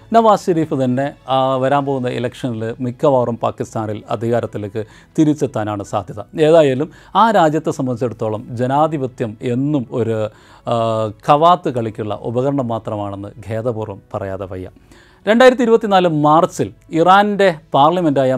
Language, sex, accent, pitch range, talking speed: Malayalam, male, native, 120-170 Hz, 100 wpm